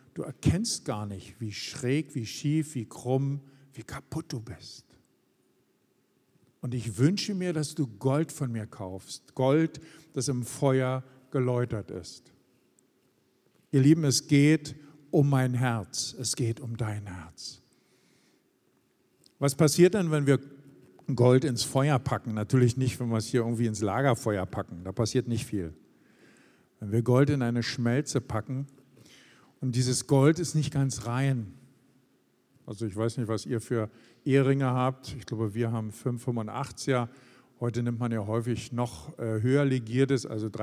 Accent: German